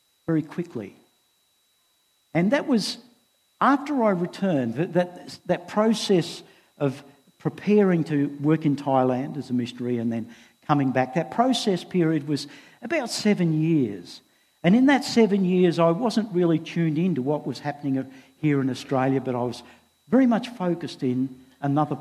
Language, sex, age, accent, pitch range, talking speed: English, male, 50-69, Australian, 140-200 Hz, 155 wpm